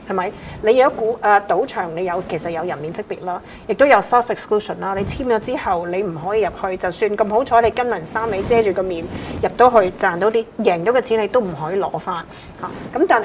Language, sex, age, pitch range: Chinese, female, 30-49, 180-225 Hz